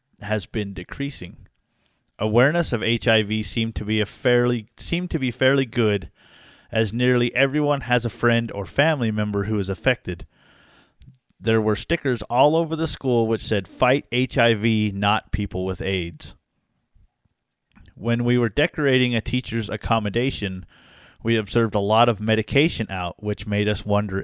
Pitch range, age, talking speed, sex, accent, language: 105-120 Hz, 30-49, 150 wpm, male, American, English